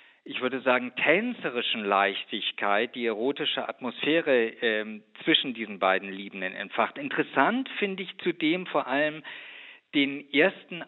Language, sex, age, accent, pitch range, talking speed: German, male, 50-69, German, 130-180 Hz, 120 wpm